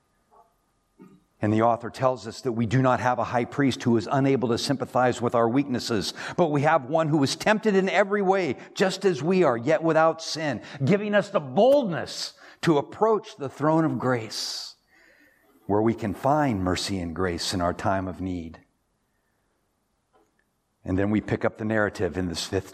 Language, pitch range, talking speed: English, 110-175 Hz, 185 wpm